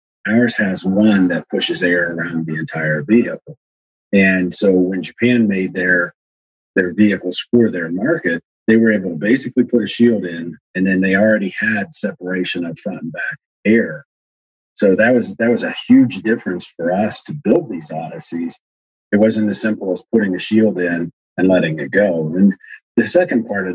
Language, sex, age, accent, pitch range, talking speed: English, male, 40-59, American, 85-95 Hz, 185 wpm